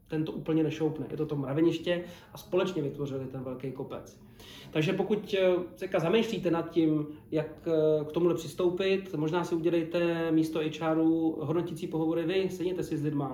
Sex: male